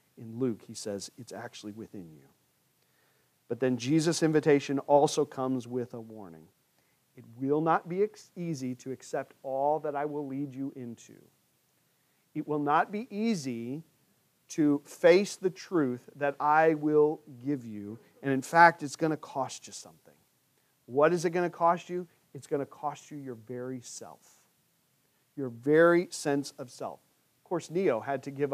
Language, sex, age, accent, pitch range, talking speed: English, male, 40-59, American, 130-175 Hz, 170 wpm